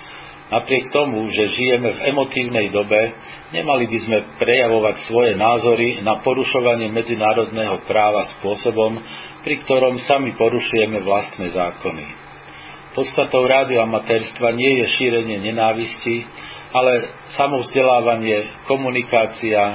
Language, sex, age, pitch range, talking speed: Slovak, male, 40-59, 110-130 Hz, 105 wpm